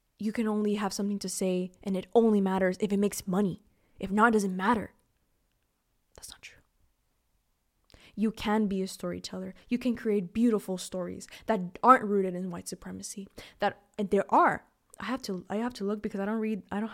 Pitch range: 185-225 Hz